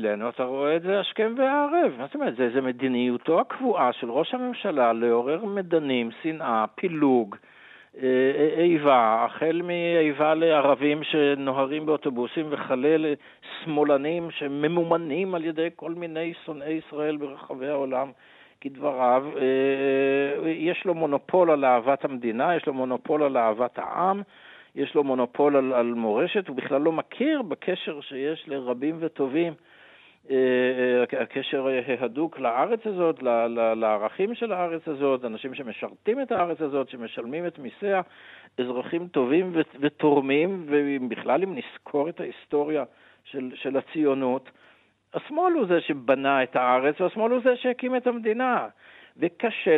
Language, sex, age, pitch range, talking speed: Hebrew, male, 60-79, 135-175 Hz, 130 wpm